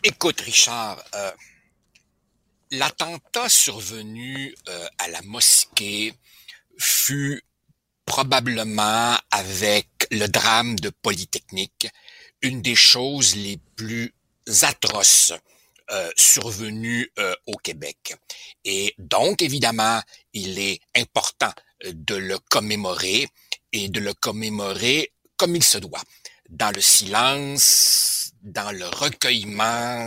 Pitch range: 105-130 Hz